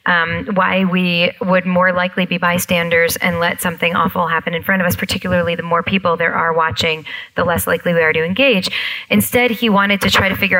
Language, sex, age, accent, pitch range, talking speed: English, female, 30-49, American, 180-215 Hz, 215 wpm